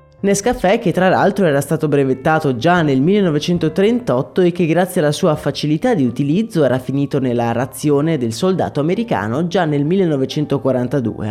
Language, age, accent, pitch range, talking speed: Italian, 20-39, native, 130-180 Hz, 150 wpm